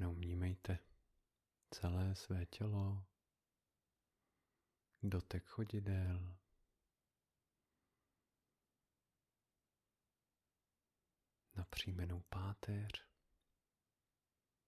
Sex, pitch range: male, 90-115 Hz